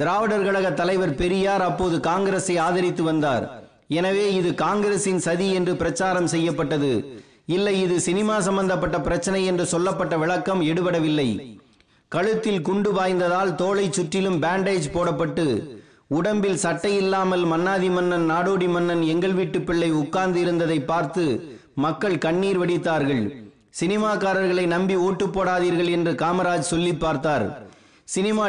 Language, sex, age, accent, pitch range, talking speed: Tamil, male, 30-49, native, 165-190 Hz, 100 wpm